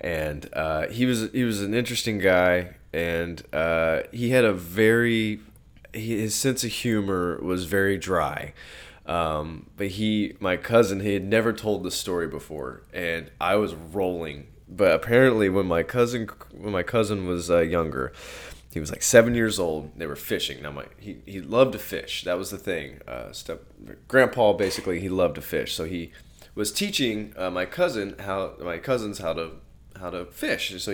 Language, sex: English, male